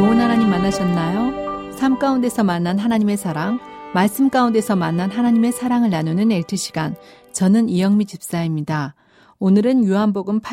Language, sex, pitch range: Korean, female, 175-210 Hz